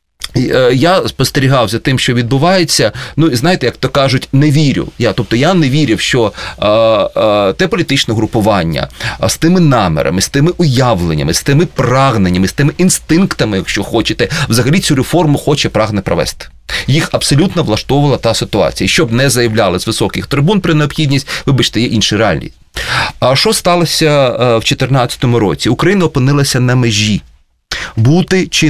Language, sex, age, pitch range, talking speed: Russian, male, 30-49, 115-160 Hz, 155 wpm